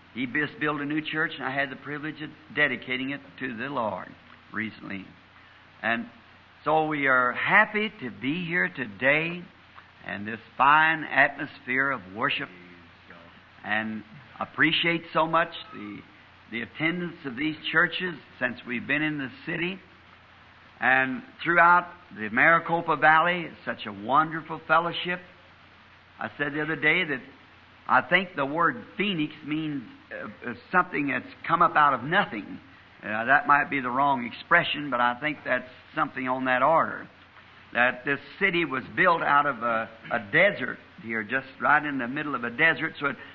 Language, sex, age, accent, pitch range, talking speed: English, male, 60-79, American, 115-160 Hz, 160 wpm